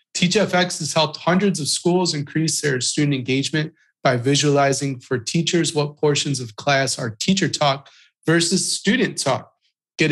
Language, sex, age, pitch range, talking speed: English, male, 30-49, 135-170 Hz, 150 wpm